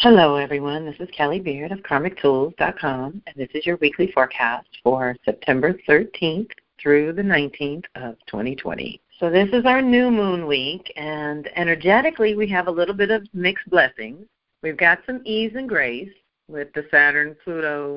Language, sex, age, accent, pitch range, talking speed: English, female, 50-69, American, 125-160 Hz, 160 wpm